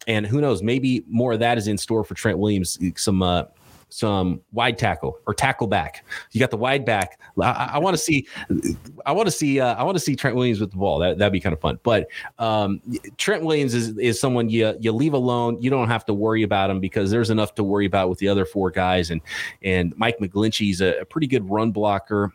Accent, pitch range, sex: American, 95-115 Hz, male